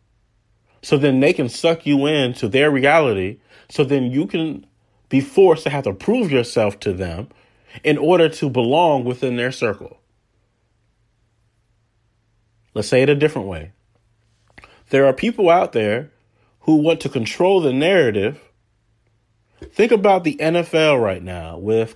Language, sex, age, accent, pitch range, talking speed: English, male, 30-49, American, 115-155 Hz, 150 wpm